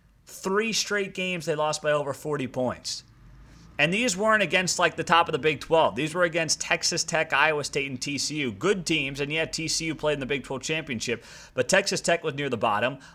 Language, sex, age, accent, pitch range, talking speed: English, male, 30-49, American, 130-175 Hz, 215 wpm